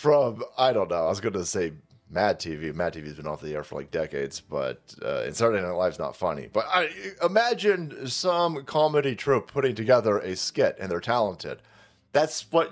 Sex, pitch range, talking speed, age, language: male, 125-185 Hz, 205 wpm, 30-49, English